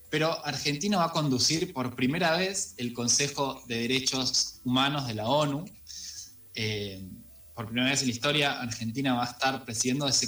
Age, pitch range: 20-39, 120-155 Hz